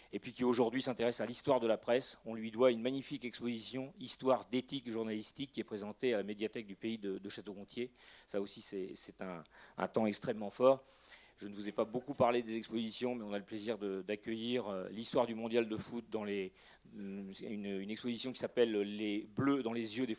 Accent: French